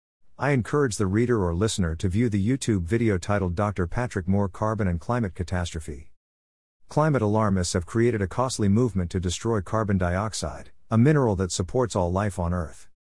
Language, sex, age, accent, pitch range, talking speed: English, male, 50-69, American, 90-115 Hz, 175 wpm